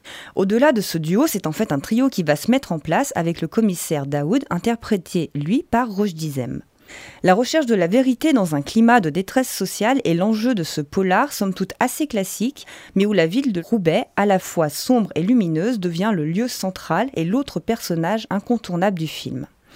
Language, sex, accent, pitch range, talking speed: French, female, French, 165-235 Hz, 200 wpm